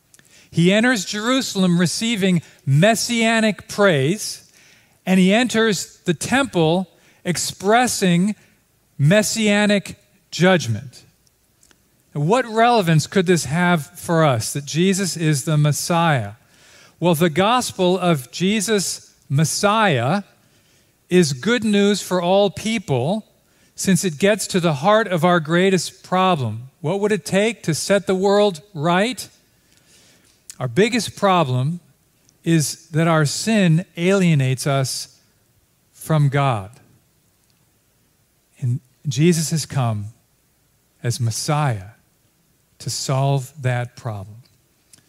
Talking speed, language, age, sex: 105 wpm, English, 40-59, male